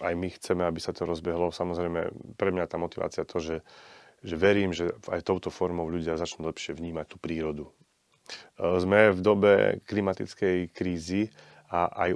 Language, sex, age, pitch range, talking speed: Slovak, male, 30-49, 85-95 Hz, 170 wpm